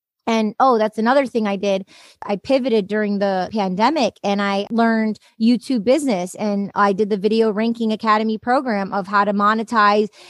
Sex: female